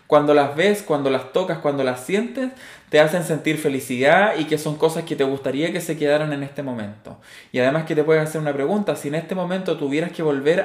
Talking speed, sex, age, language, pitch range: 230 wpm, male, 20-39, Spanish, 135-170 Hz